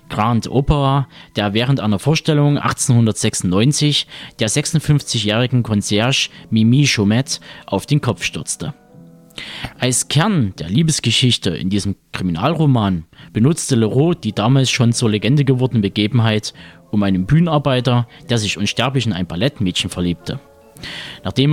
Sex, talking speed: male, 120 wpm